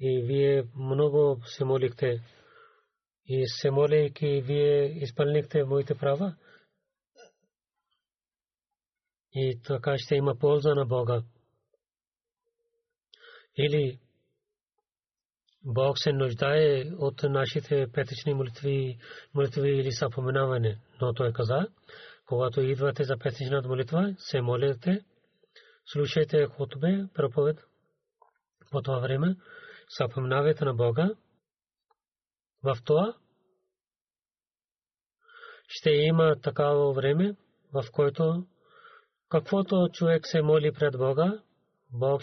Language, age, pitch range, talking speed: Bulgarian, 40-59, 135-175 Hz, 90 wpm